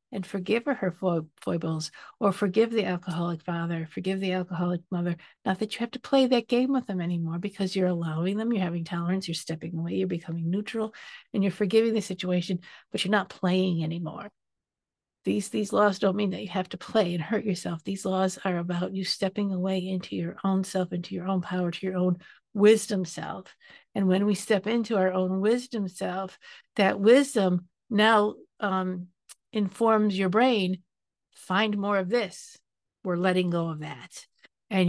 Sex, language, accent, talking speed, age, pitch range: female, English, American, 180 wpm, 50-69, 175-210 Hz